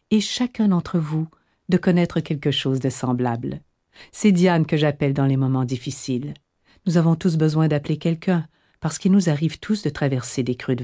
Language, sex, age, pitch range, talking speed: French, female, 50-69, 140-190 Hz, 190 wpm